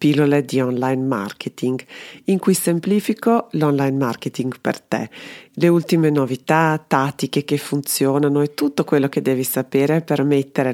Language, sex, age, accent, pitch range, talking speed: Italian, female, 40-59, native, 135-170 Hz, 140 wpm